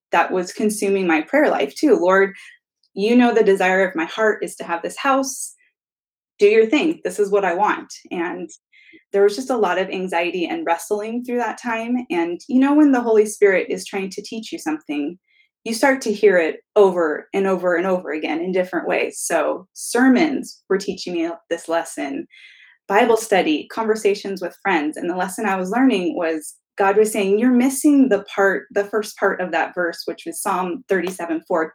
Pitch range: 190-275 Hz